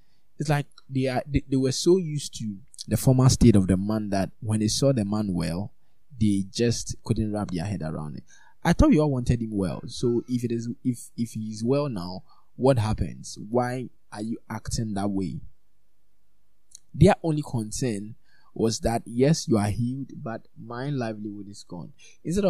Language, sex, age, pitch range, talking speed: English, male, 20-39, 100-130 Hz, 185 wpm